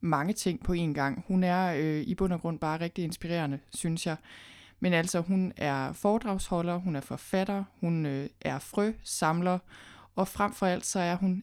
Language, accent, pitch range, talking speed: Danish, native, 155-190 Hz, 195 wpm